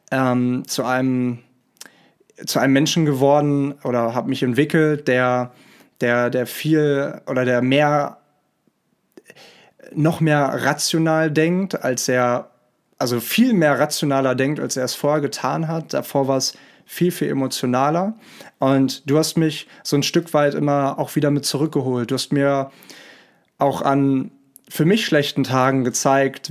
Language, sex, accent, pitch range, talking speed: German, male, German, 130-155 Hz, 145 wpm